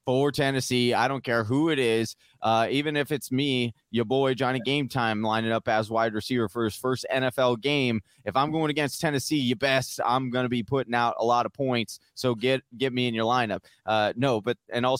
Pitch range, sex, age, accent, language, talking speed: 105-125 Hz, male, 20-39, American, English, 230 wpm